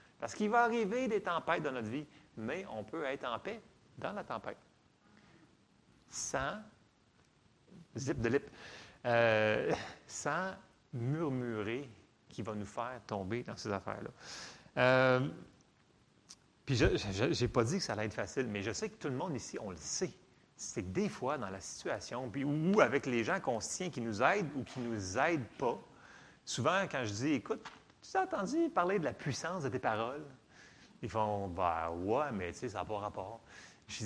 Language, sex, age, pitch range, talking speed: French, male, 30-49, 110-150 Hz, 180 wpm